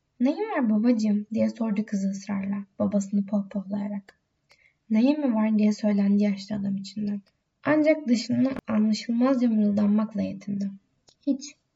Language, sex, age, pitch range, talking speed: Turkish, female, 10-29, 200-245 Hz, 115 wpm